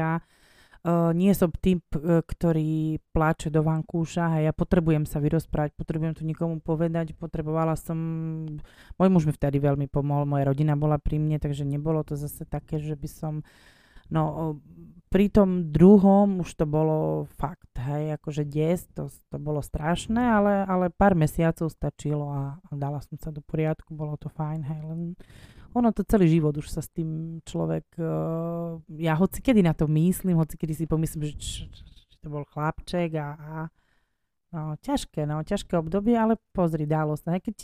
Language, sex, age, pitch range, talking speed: Slovak, female, 20-39, 150-170 Hz, 180 wpm